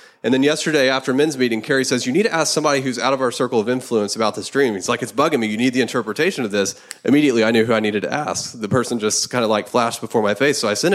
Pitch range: 115-140 Hz